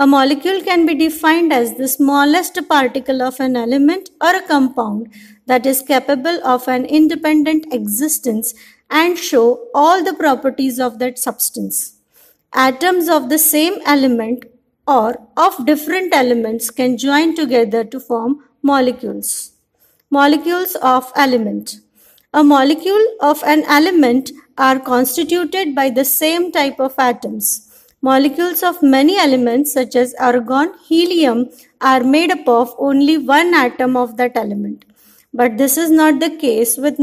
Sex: female